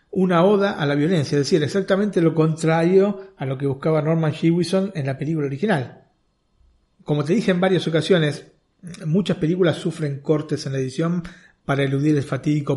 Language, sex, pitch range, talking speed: Spanish, male, 140-170 Hz, 175 wpm